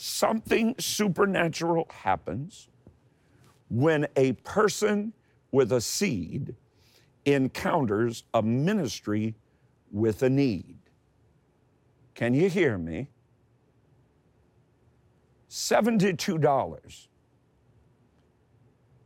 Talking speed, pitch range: 65 wpm, 120-160 Hz